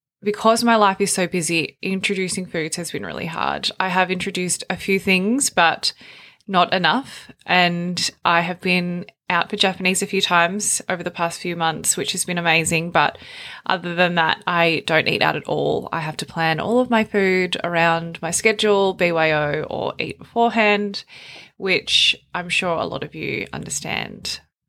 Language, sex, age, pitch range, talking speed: English, female, 20-39, 165-195 Hz, 175 wpm